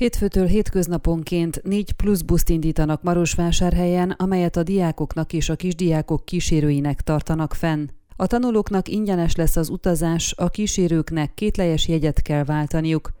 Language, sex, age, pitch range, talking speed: Hungarian, female, 30-49, 160-190 Hz, 125 wpm